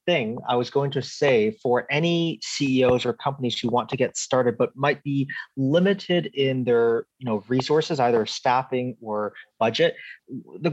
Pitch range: 125-165 Hz